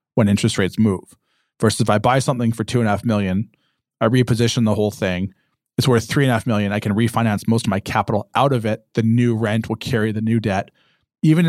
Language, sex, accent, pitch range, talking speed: English, male, American, 115-140 Hz, 240 wpm